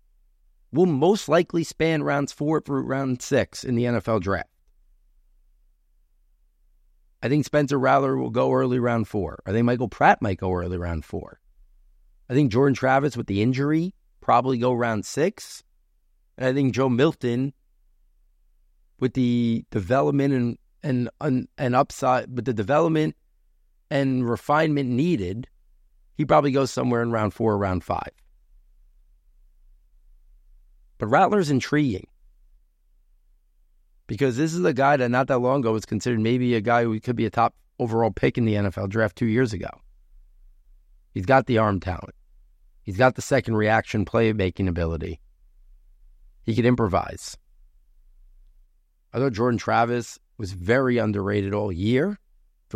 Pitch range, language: 80-130 Hz, English